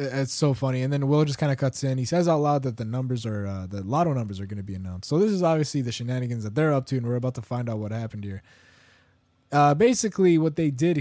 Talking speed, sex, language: 285 wpm, male, English